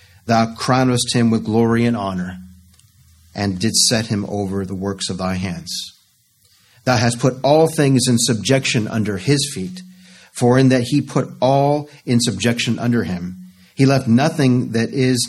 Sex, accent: male, American